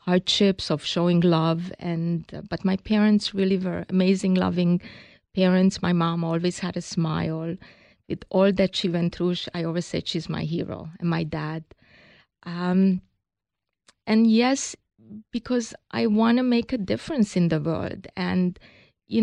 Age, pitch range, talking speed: 30-49, 175-210 Hz, 155 wpm